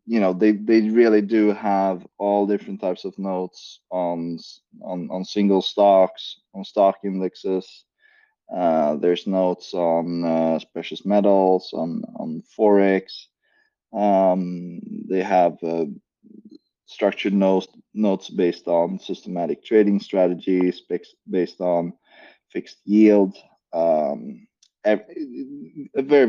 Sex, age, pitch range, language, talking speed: male, 20-39, 90-110 Hz, English, 115 wpm